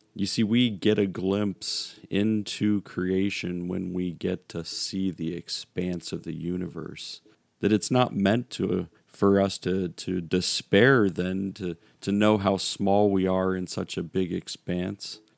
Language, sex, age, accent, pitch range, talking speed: English, male, 40-59, American, 95-110 Hz, 160 wpm